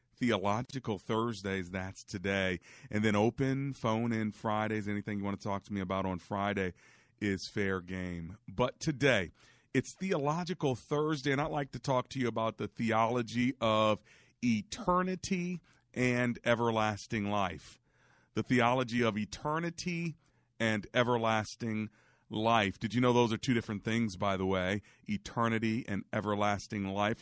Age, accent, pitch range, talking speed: 40-59, American, 105-125 Hz, 145 wpm